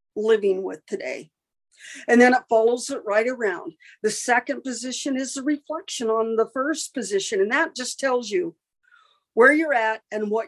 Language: English